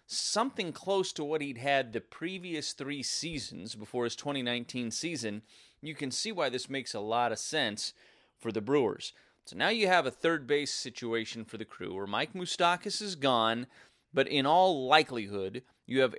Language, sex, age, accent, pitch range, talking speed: English, male, 30-49, American, 115-160 Hz, 180 wpm